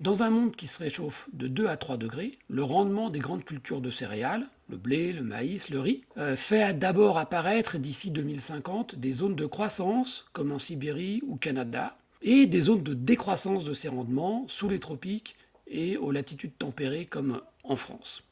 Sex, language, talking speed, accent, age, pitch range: male, French, 185 wpm, French, 40-59, 135-210 Hz